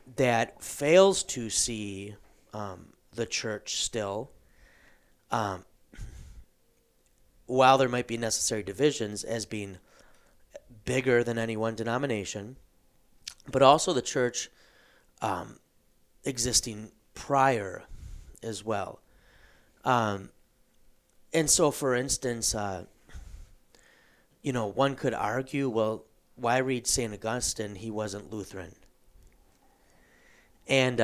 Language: English